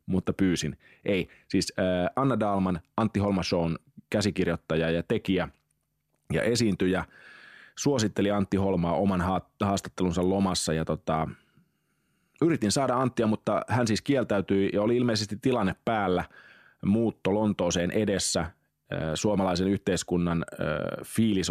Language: Finnish